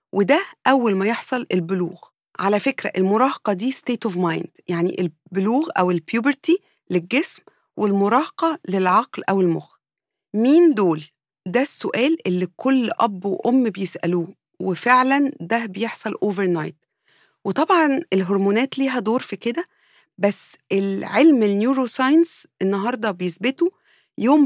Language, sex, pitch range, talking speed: English, female, 190-260 Hz, 120 wpm